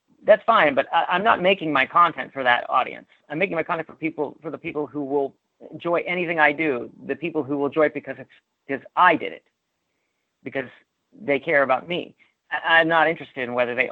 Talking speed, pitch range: 220 wpm, 125-165 Hz